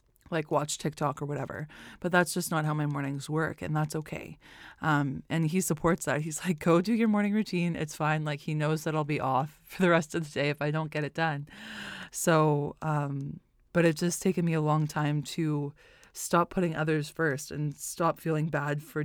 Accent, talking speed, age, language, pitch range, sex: American, 215 wpm, 20-39, English, 150-175 Hz, female